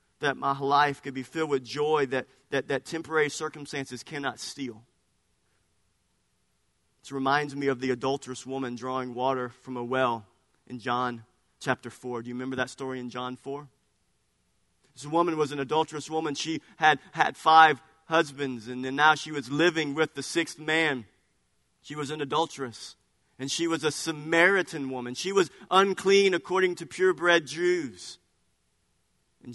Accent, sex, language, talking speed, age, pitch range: American, male, English, 160 wpm, 40-59, 130-180 Hz